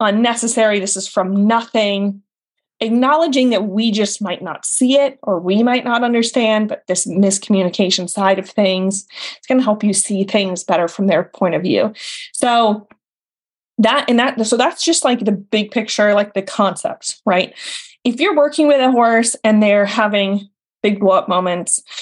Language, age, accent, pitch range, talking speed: English, 20-39, American, 195-230 Hz, 175 wpm